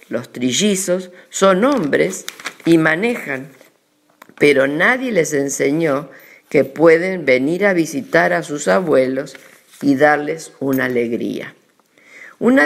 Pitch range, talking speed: 135-200 Hz, 110 wpm